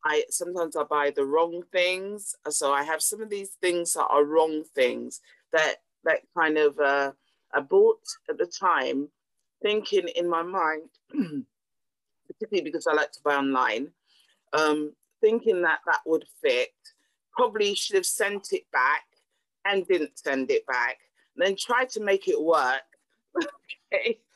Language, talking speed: English, 160 wpm